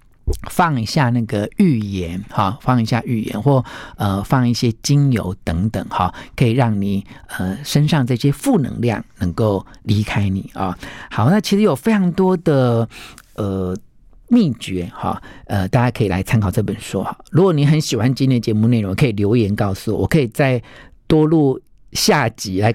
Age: 50-69